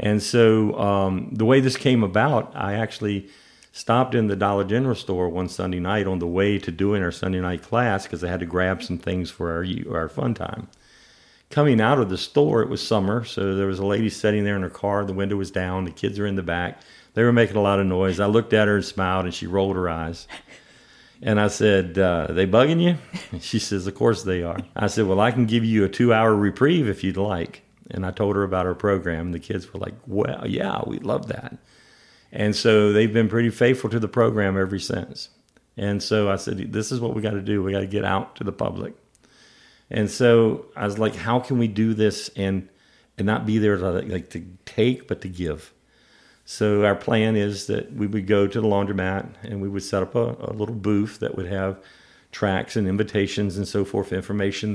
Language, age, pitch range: English, 50-69, 95-110 Hz